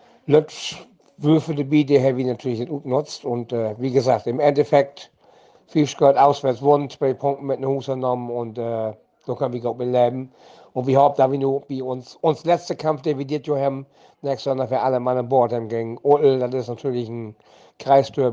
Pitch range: 120-145 Hz